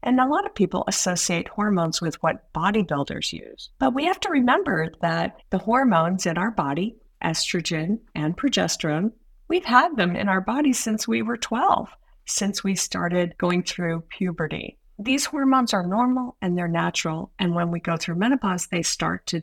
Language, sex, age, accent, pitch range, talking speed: English, female, 50-69, American, 180-255 Hz, 175 wpm